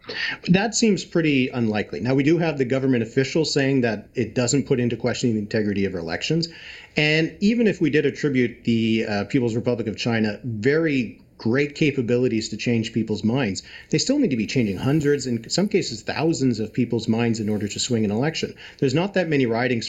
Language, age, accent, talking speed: English, 40-59, American, 200 wpm